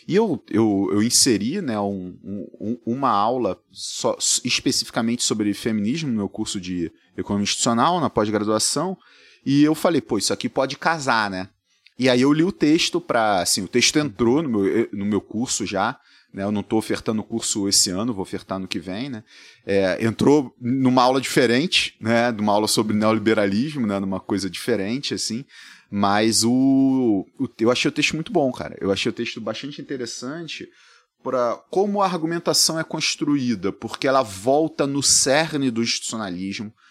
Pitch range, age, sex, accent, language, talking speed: 105-135 Hz, 30-49, male, Brazilian, Portuguese, 165 wpm